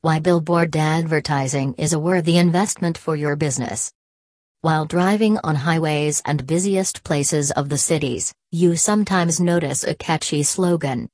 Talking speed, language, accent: 140 wpm, English, American